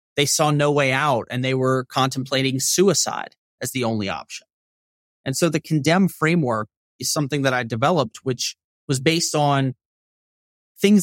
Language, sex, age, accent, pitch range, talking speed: English, male, 30-49, American, 125-165 Hz, 160 wpm